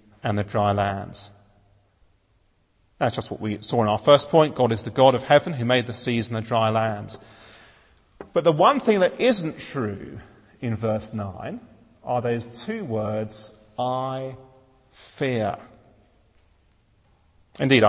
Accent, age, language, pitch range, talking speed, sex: British, 40-59, English, 105-140 Hz, 150 wpm, male